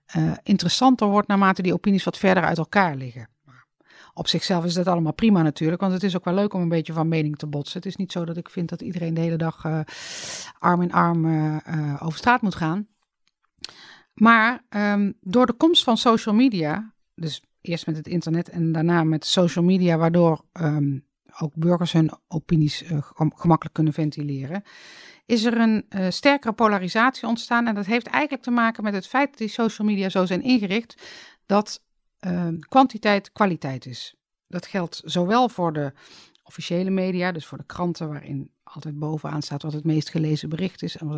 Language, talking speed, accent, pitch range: Dutch, 190 wpm, Dutch, 155-200 Hz